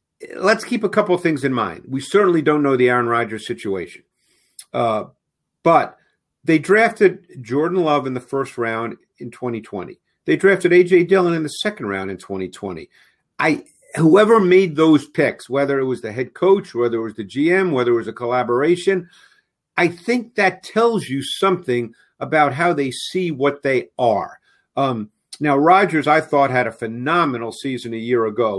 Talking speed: 175 wpm